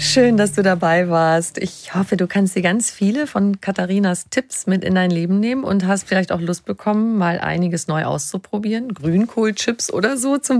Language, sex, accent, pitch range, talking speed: German, female, German, 160-200 Hz, 190 wpm